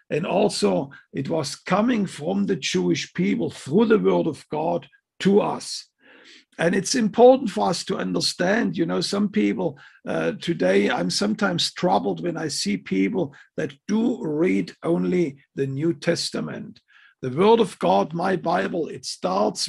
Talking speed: 155 wpm